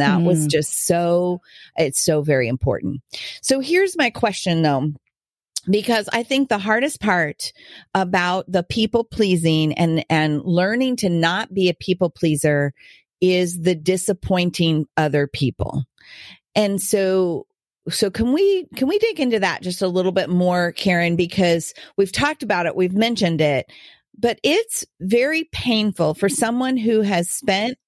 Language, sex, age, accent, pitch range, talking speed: English, female, 40-59, American, 160-215 Hz, 150 wpm